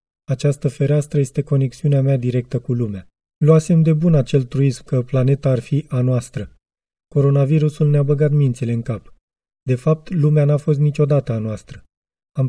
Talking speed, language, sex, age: 165 wpm, Romanian, male, 30-49